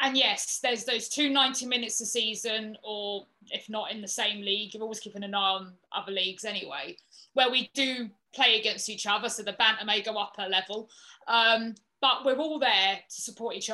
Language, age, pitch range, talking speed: English, 20-39, 210-250 Hz, 210 wpm